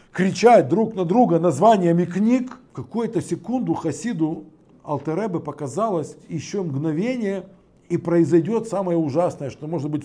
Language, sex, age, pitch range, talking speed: Russian, male, 50-69, 165-220 Hz, 120 wpm